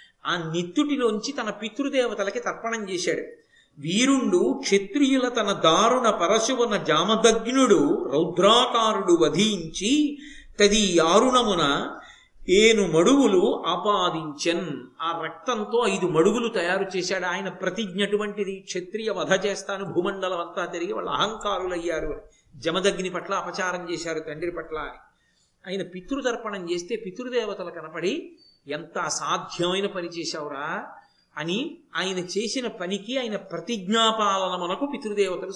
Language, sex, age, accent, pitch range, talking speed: Telugu, male, 50-69, native, 180-250 Hz, 100 wpm